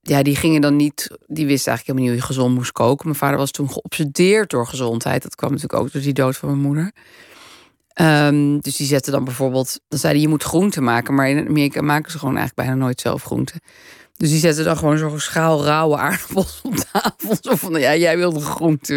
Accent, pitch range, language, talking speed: Dutch, 140-170 Hz, Dutch, 235 wpm